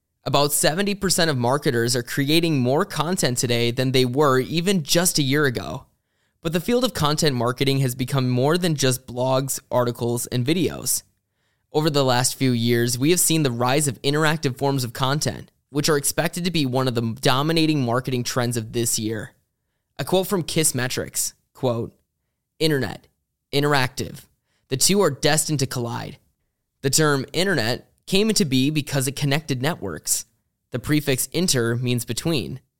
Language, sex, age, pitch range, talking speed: English, male, 20-39, 120-155 Hz, 165 wpm